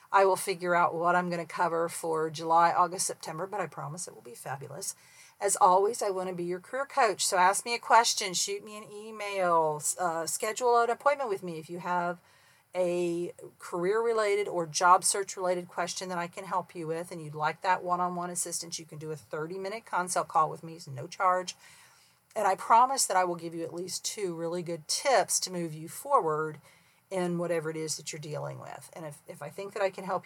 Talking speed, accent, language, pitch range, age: 220 wpm, American, English, 165-200 Hz, 40-59